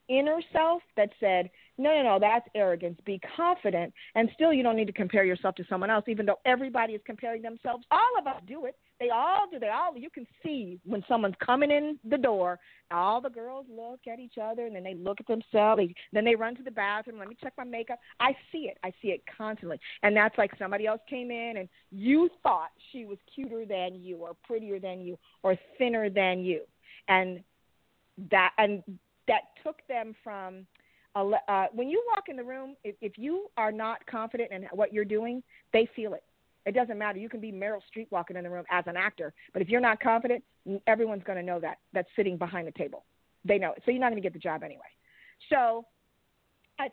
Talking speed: 220 wpm